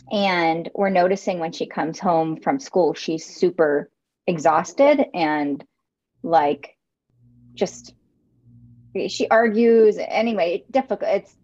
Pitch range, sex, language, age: 165-205 Hz, female, English, 30-49